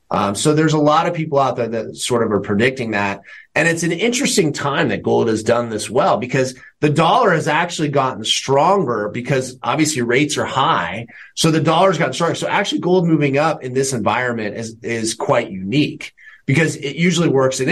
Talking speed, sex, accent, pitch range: 205 wpm, male, American, 110-145 Hz